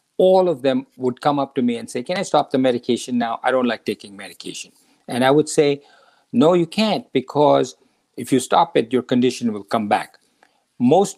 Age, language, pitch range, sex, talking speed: 50-69, English, 120-170 Hz, male, 210 wpm